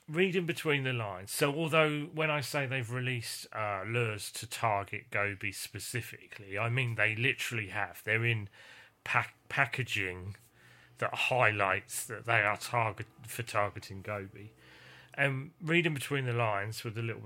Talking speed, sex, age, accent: 145 wpm, male, 30-49, British